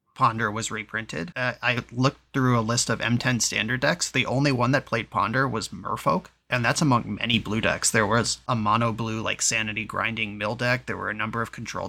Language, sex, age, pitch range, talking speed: English, male, 30-49, 110-130 Hz, 215 wpm